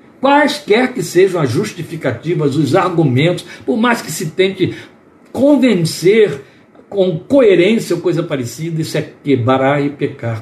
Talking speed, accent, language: 130 wpm, Brazilian, Portuguese